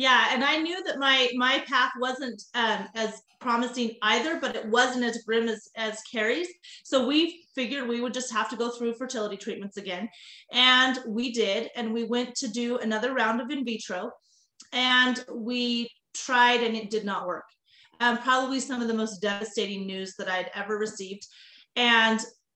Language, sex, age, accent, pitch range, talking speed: English, female, 30-49, American, 215-255 Hz, 180 wpm